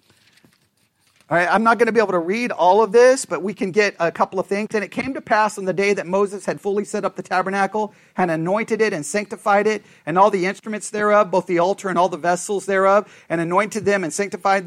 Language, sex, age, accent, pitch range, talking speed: English, male, 40-59, American, 180-225 Hz, 240 wpm